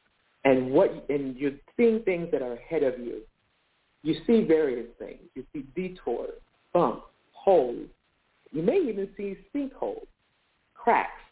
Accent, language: American, English